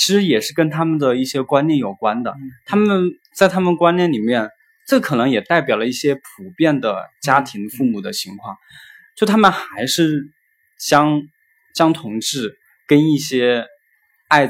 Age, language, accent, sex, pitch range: 20-39, Chinese, native, male, 125-190 Hz